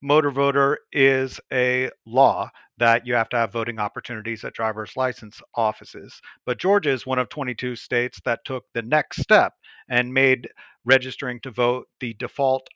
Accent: American